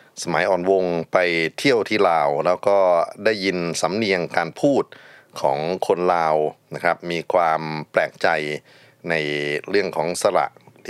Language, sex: Thai, male